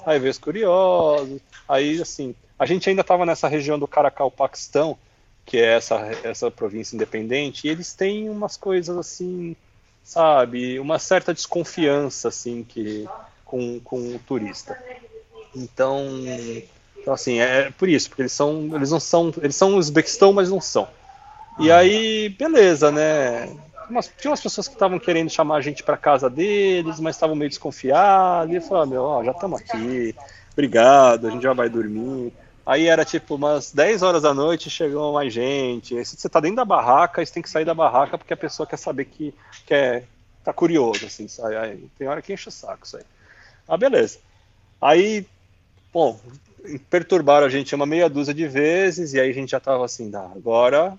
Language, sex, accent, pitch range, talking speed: Portuguese, male, Brazilian, 125-175 Hz, 180 wpm